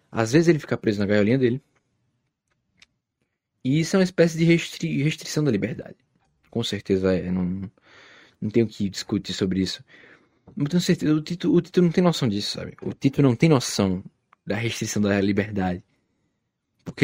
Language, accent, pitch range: Portuguese, Brazilian, 105-145 Hz